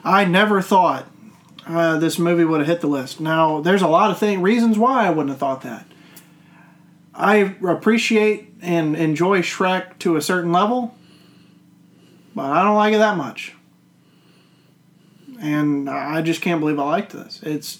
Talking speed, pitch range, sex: 160 wpm, 160-190 Hz, male